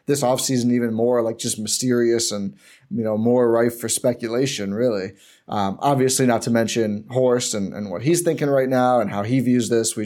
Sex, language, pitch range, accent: male, English, 115-140 Hz, American